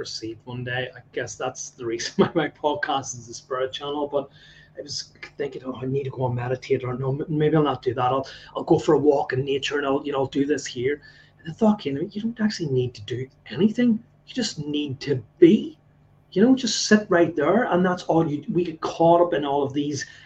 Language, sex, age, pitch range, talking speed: English, male, 30-49, 135-160 Hz, 250 wpm